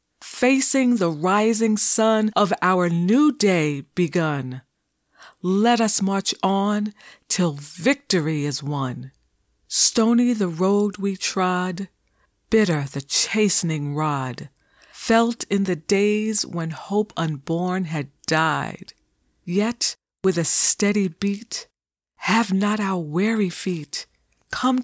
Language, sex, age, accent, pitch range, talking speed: English, female, 40-59, American, 165-225 Hz, 110 wpm